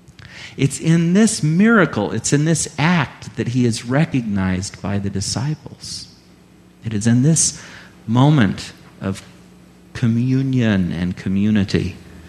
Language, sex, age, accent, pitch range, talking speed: English, male, 40-59, American, 95-145 Hz, 115 wpm